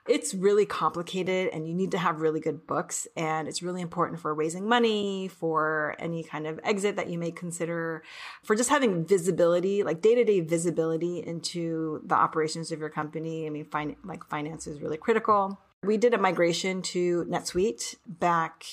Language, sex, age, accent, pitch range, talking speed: English, female, 30-49, American, 160-200 Hz, 175 wpm